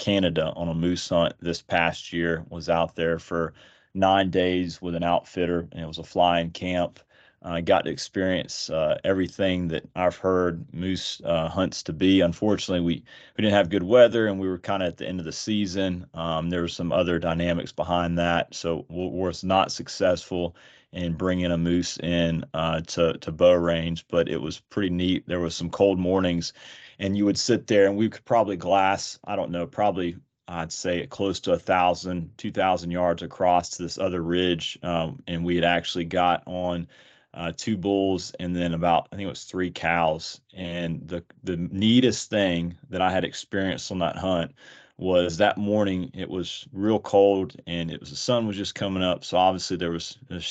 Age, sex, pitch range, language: 30-49, male, 85-95 Hz, English